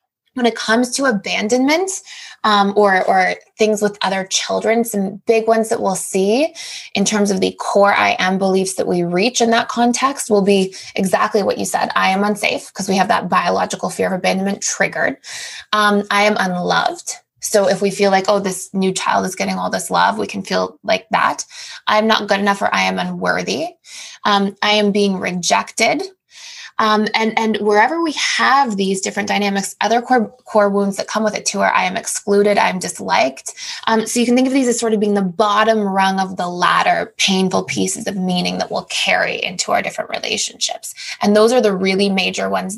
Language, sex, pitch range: English, female, 195-235 Hz